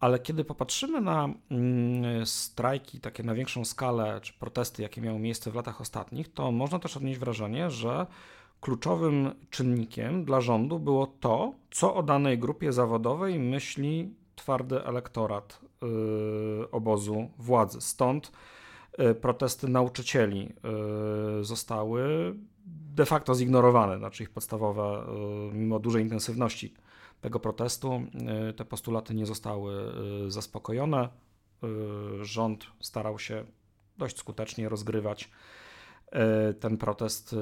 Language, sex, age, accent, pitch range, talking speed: Polish, male, 40-59, native, 110-125 Hz, 105 wpm